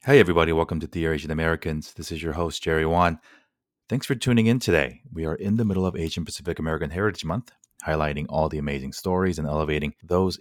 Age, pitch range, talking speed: 30-49, 75-90 Hz, 215 wpm